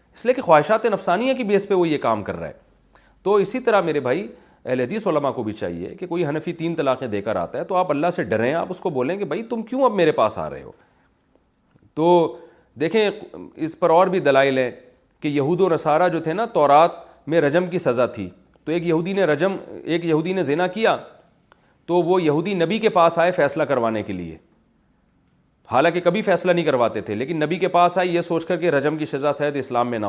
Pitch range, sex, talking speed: 145-190 Hz, male, 235 wpm